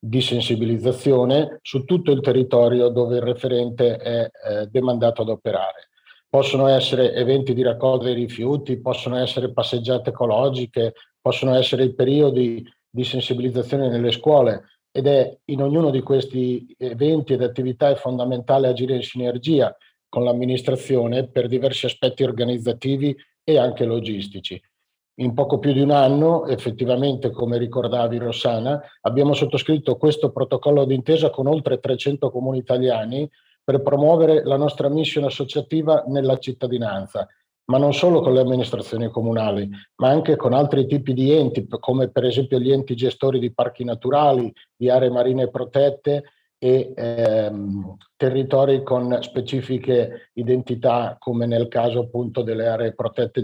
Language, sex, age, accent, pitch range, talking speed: Italian, male, 50-69, native, 120-140 Hz, 140 wpm